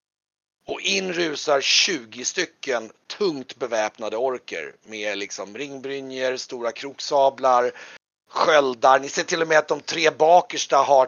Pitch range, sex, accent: 120-160 Hz, male, native